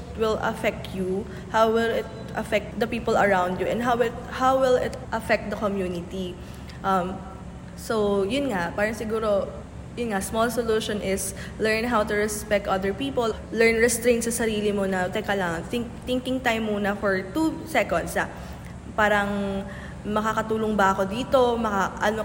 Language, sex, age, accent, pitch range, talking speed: English, female, 20-39, Filipino, 195-240 Hz, 155 wpm